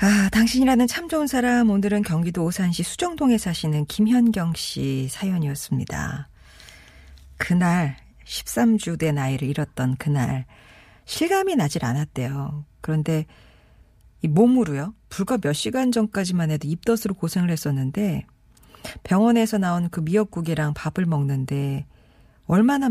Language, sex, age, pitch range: Korean, female, 40-59, 145-200 Hz